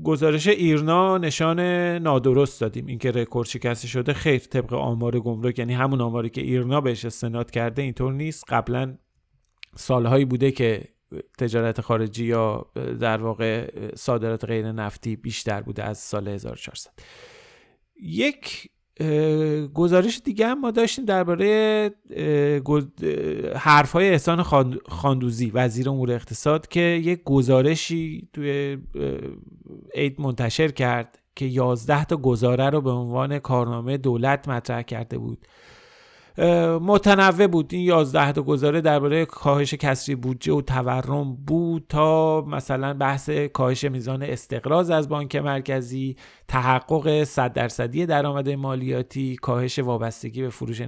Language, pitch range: Persian, 125-160 Hz